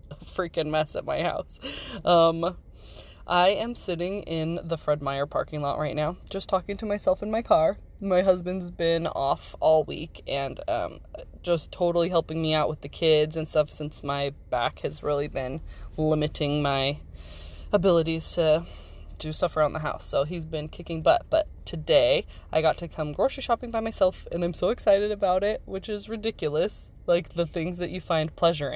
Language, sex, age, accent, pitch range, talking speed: English, female, 20-39, American, 150-200 Hz, 185 wpm